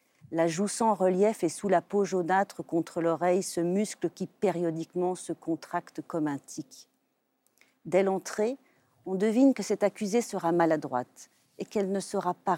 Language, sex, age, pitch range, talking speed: French, female, 40-59, 155-220 Hz, 160 wpm